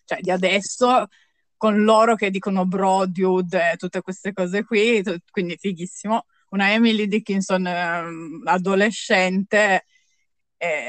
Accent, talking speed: native, 115 wpm